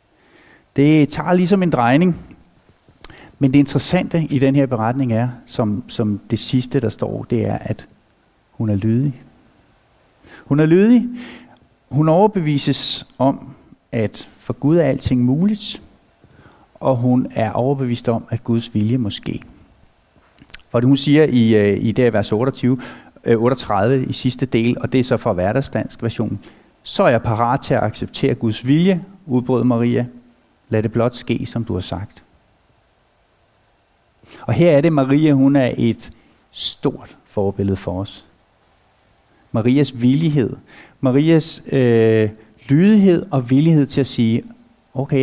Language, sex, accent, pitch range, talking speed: Danish, male, native, 115-140 Hz, 140 wpm